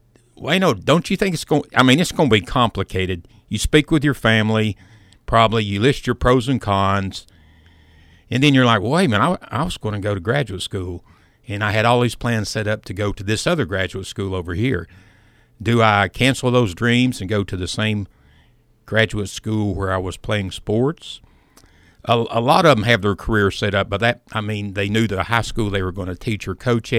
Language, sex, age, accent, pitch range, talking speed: English, male, 60-79, American, 95-120 Hz, 230 wpm